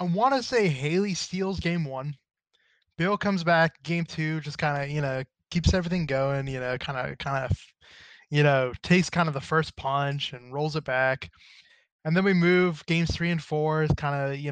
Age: 20-39